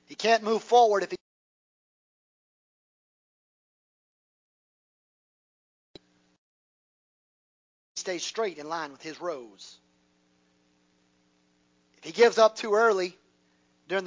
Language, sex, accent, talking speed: English, male, American, 85 wpm